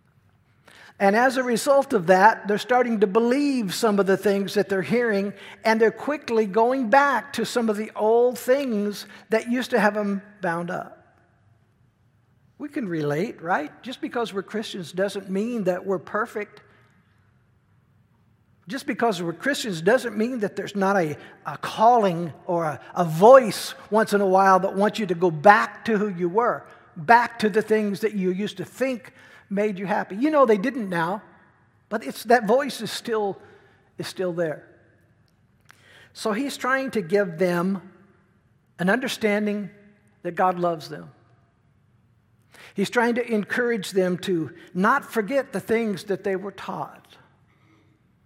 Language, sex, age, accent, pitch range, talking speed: English, male, 60-79, American, 170-220 Hz, 160 wpm